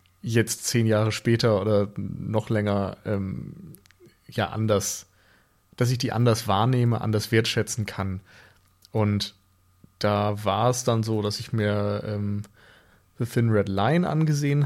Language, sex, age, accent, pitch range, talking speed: German, male, 30-49, German, 105-130 Hz, 135 wpm